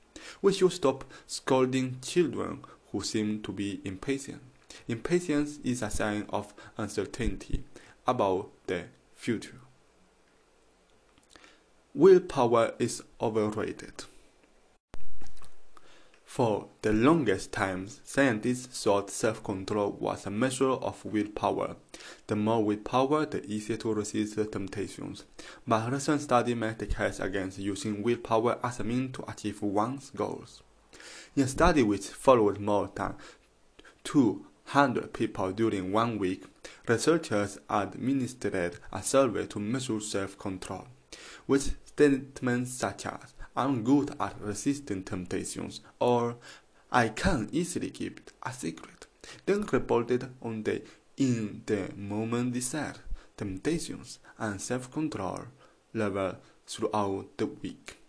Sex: male